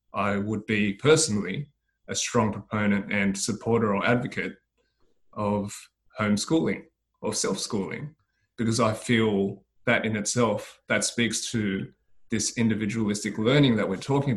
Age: 20-39